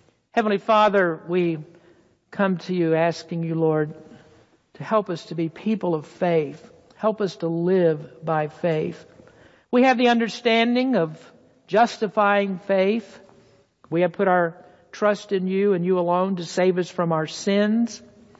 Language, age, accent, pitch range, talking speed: English, 60-79, American, 170-210 Hz, 150 wpm